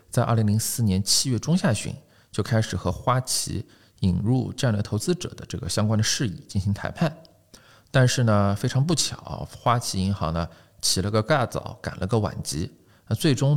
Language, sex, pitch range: Chinese, male, 95-125 Hz